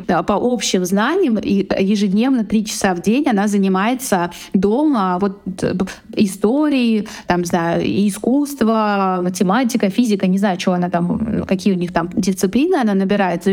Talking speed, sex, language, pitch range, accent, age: 135 wpm, female, Russian, 190-225 Hz, native, 20-39